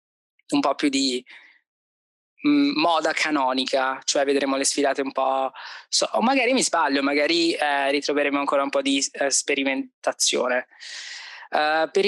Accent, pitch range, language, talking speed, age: native, 135-160 Hz, Italian, 130 wpm, 20-39